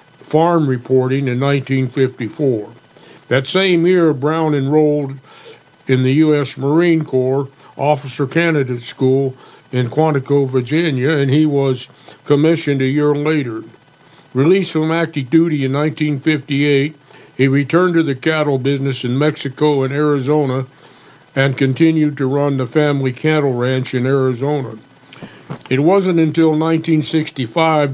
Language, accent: English, American